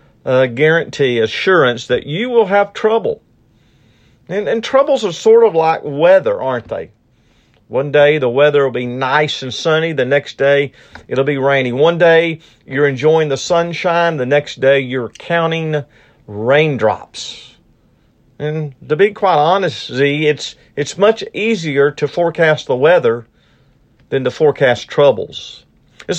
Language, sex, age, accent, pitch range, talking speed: English, male, 50-69, American, 130-200 Hz, 145 wpm